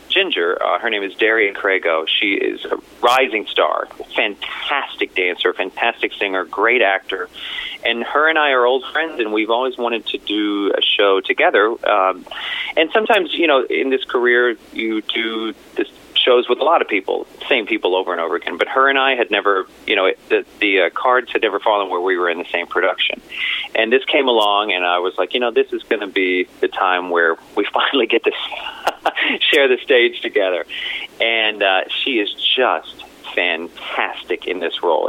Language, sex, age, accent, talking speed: English, male, 30-49, American, 195 wpm